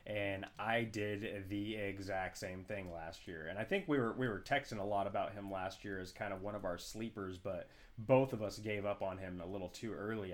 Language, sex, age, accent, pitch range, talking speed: English, male, 20-39, American, 95-110 Hz, 245 wpm